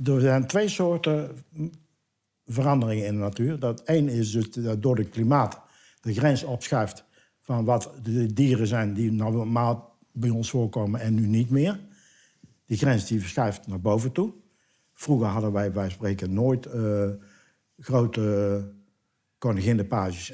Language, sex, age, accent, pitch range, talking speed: Dutch, male, 60-79, Dutch, 105-130 Hz, 145 wpm